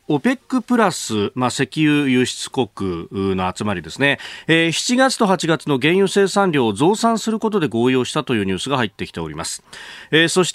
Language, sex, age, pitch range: Japanese, male, 40-59, 115-175 Hz